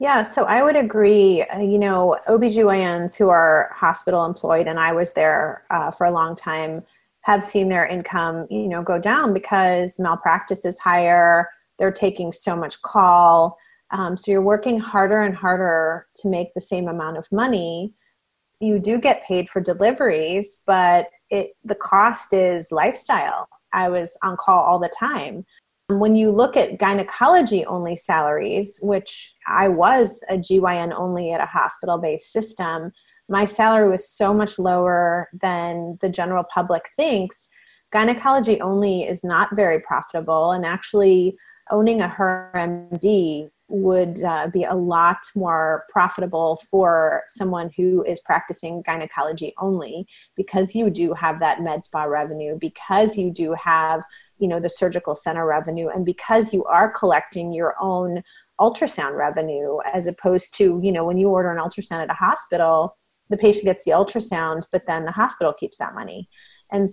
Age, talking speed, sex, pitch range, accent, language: 30-49, 155 wpm, female, 170-200 Hz, American, English